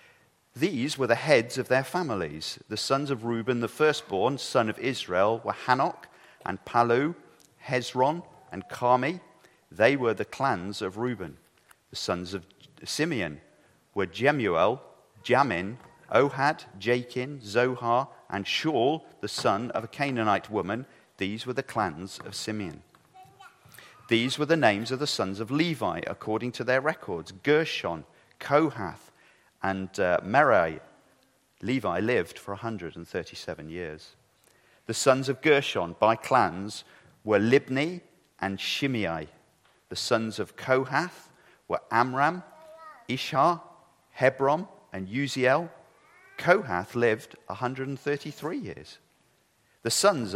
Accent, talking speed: British, 120 wpm